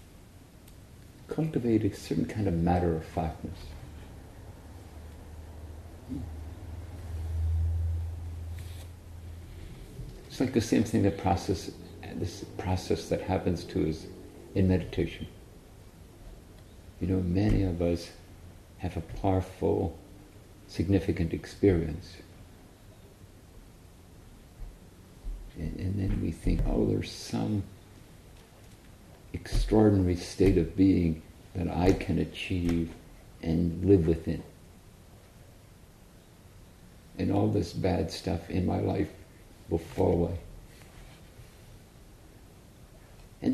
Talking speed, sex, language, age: 90 wpm, male, English, 50-69